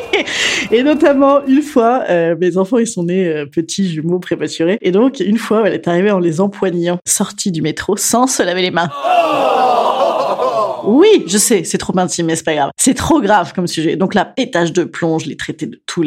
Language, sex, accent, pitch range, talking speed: French, female, French, 170-255 Hz, 215 wpm